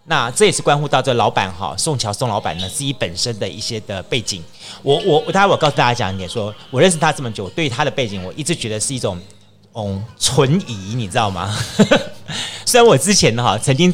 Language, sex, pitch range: Chinese, male, 105-150 Hz